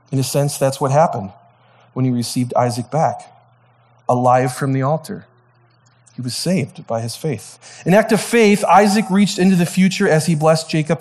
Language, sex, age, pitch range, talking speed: English, male, 30-49, 125-180 Hz, 190 wpm